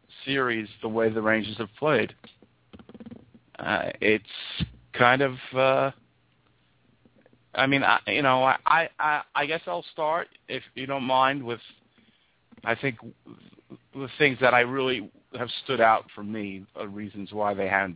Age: 50-69